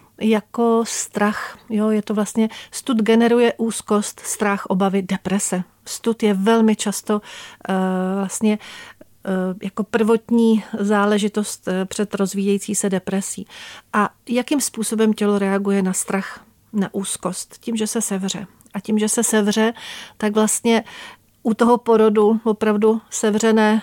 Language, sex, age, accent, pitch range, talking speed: Czech, female, 40-59, native, 185-215 Hz, 120 wpm